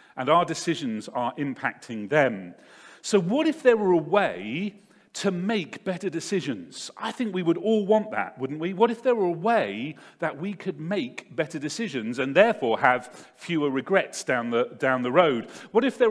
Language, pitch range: English, 145-215 Hz